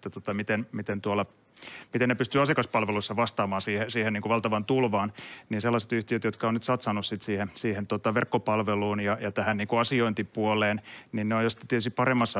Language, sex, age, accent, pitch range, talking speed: Finnish, male, 30-49, native, 105-120 Hz, 180 wpm